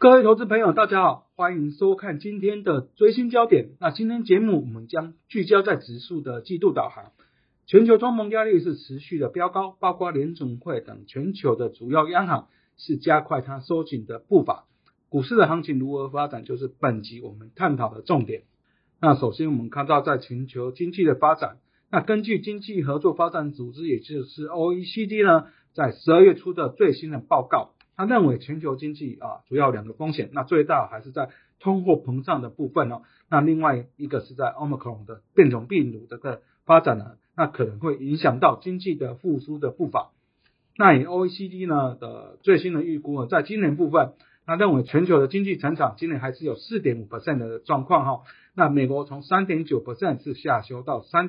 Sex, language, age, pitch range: male, Chinese, 50-69, 130-185 Hz